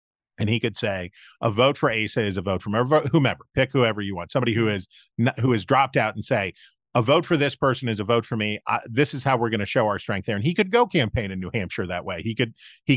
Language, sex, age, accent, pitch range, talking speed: English, male, 40-59, American, 110-140 Hz, 285 wpm